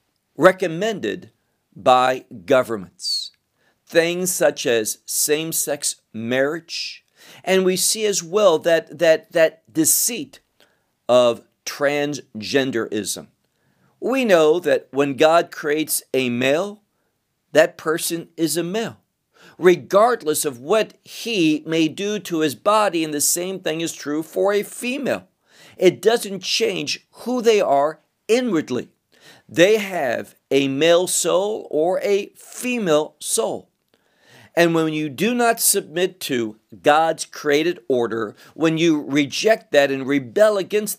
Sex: male